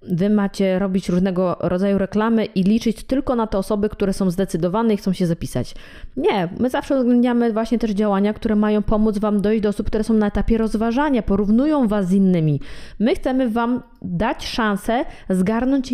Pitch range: 195-235 Hz